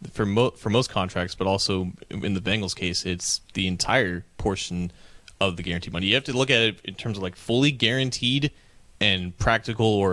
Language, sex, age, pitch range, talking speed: English, male, 30-49, 95-115 Hz, 200 wpm